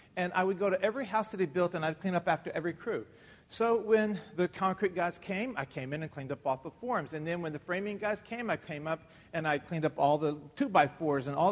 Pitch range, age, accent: 135-200 Hz, 40-59, American